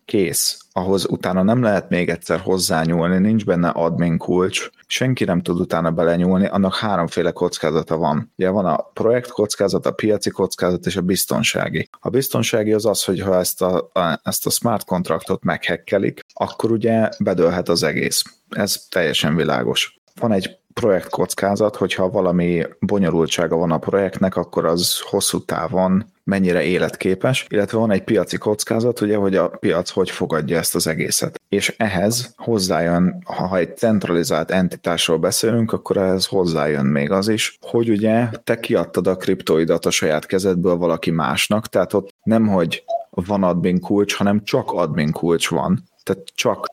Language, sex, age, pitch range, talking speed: Hungarian, male, 30-49, 90-105 Hz, 160 wpm